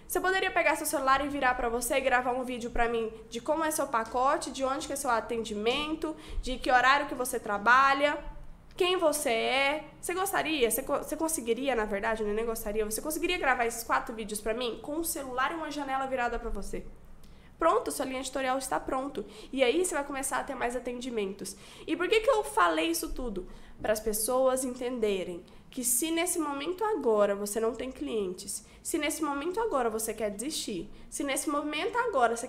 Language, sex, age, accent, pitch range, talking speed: Portuguese, female, 10-29, Brazilian, 220-275 Hz, 205 wpm